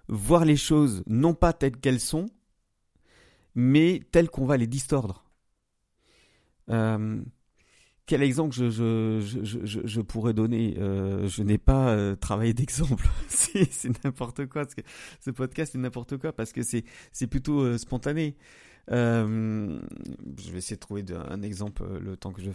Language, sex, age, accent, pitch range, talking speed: French, male, 40-59, French, 110-140 Hz, 160 wpm